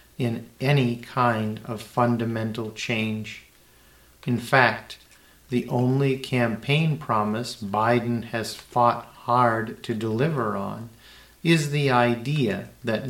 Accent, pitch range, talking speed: American, 110-125 Hz, 105 wpm